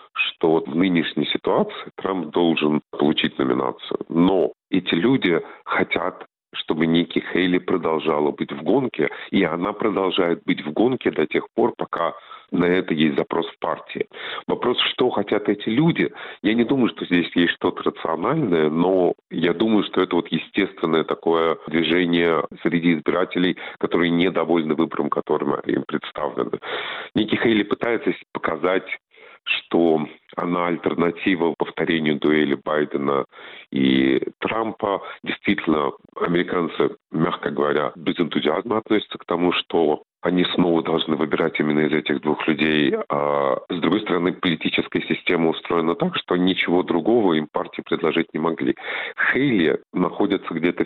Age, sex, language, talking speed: 40-59, male, Russian, 135 wpm